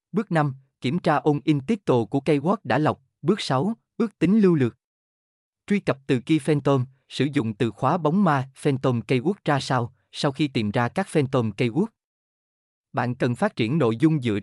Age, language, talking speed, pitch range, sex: 20-39, Vietnamese, 195 wpm, 115-160 Hz, male